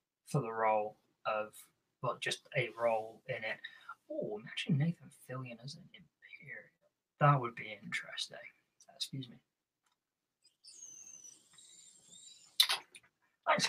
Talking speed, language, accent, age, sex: 105 wpm, English, British, 20-39, male